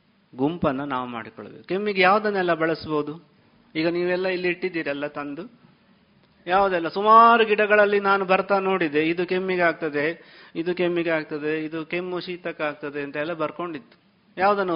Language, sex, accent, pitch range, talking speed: Kannada, male, native, 160-205 Hz, 120 wpm